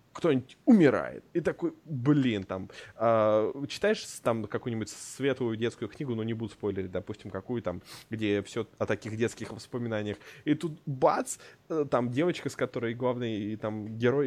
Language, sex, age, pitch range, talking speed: Russian, male, 20-39, 115-150 Hz, 160 wpm